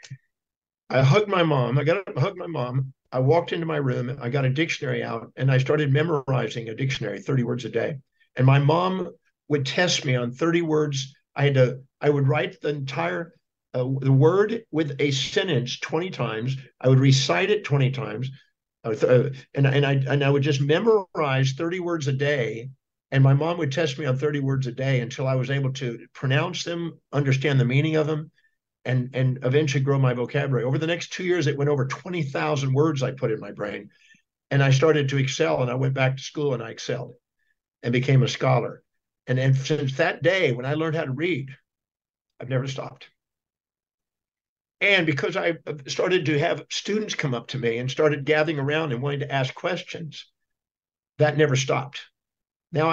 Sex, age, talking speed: male, 50-69, 200 wpm